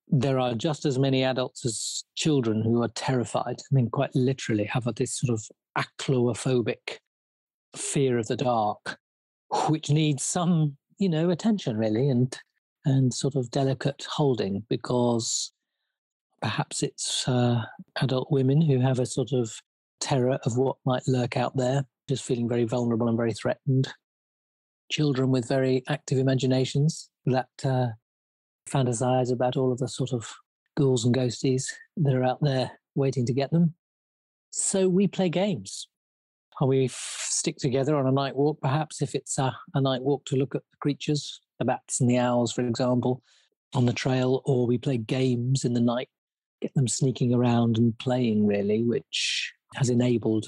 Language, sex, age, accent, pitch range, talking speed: English, male, 40-59, British, 120-140 Hz, 165 wpm